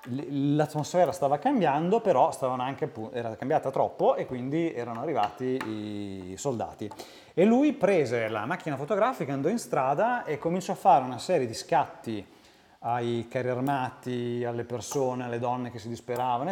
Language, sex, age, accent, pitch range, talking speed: Italian, male, 30-49, native, 110-140 Hz, 155 wpm